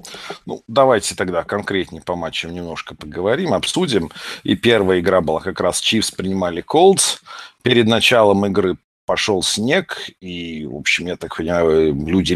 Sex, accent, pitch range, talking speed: male, native, 95-125 Hz, 145 wpm